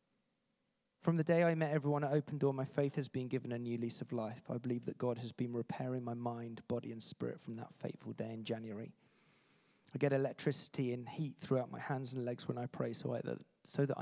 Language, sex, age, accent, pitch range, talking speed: English, male, 30-49, British, 115-140 Hz, 225 wpm